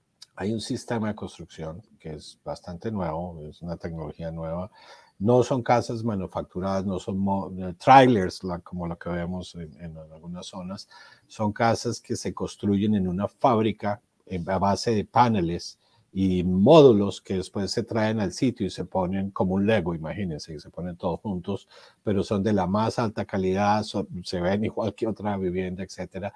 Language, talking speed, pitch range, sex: Spanish, 180 wpm, 90-110 Hz, male